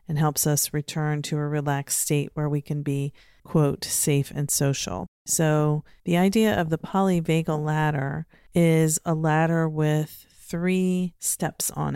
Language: English